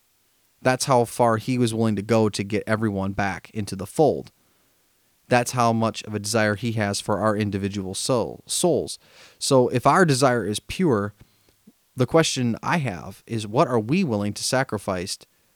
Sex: male